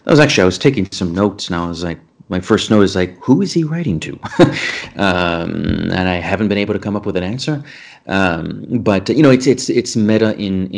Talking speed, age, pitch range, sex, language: 245 wpm, 30-49, 95-120 Hz, male, English